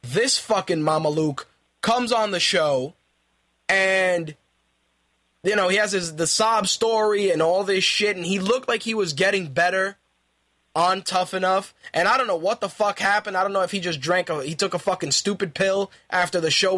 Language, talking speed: English, 205 wpm